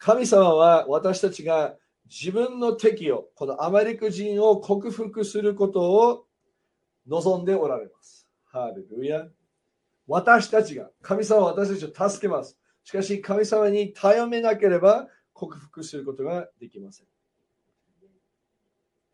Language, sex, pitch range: Japanese, male, 175-220 Hz